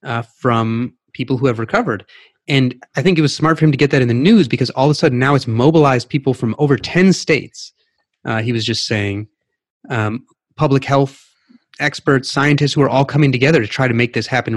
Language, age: English, 30-49